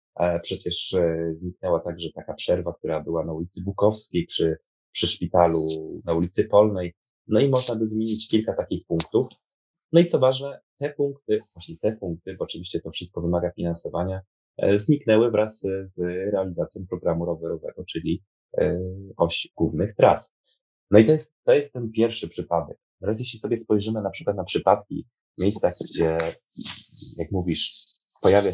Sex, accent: male, native